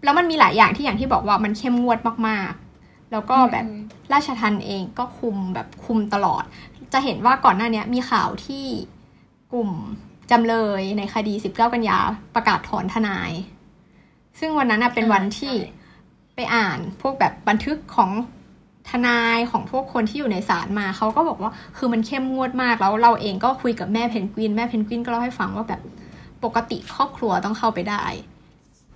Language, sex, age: English, female, 20-39